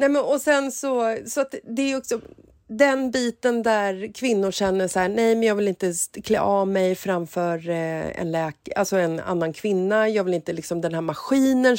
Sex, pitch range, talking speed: female, 175-255 Hz, 205 wpm